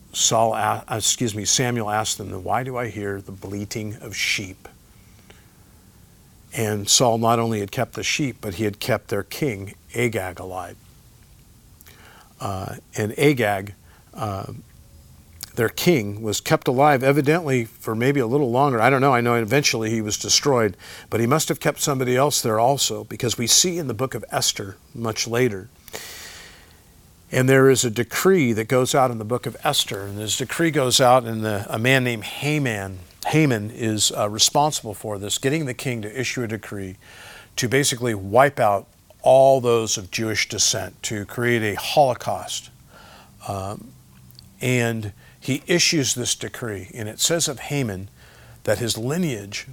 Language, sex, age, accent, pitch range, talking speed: English, male, 50-69, American, 100-130 Hz, 165 wpm